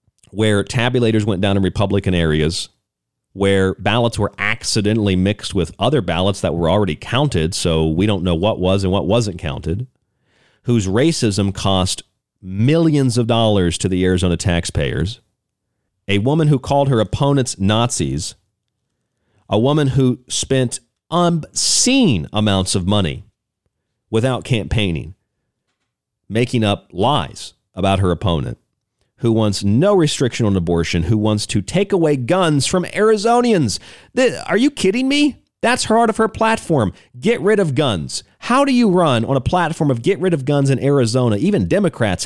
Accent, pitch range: American, 95-130 Hz